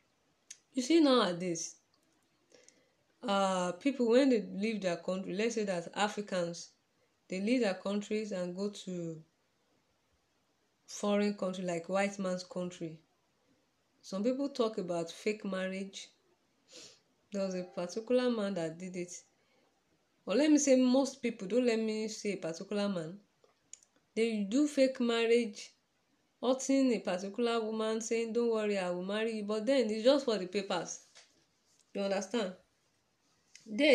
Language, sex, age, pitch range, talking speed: English, female, 20-39, 185-240 Hz, 145 wpm